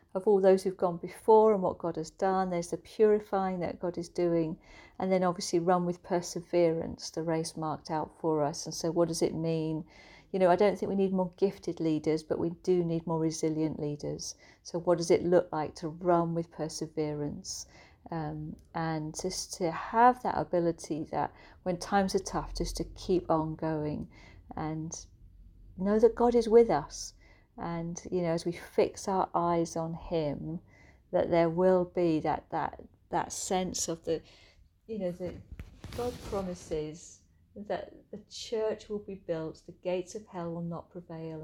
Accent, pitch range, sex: British, 155-185 Hz, female